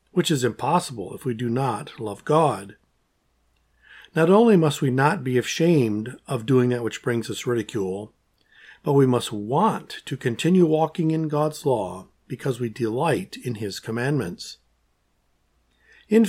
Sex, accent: male, American